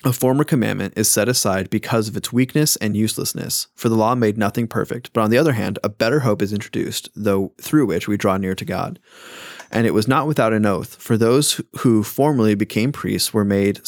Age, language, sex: 30-49, English, male